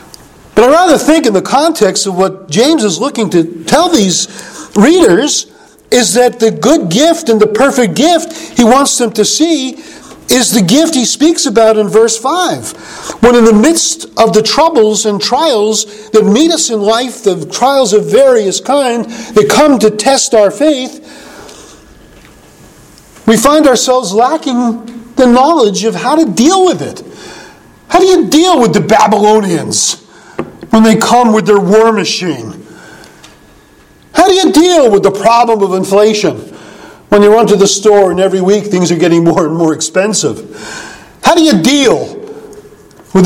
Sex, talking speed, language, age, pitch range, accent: male, 165 wpm, English, 50-69, 200-270 Hz, American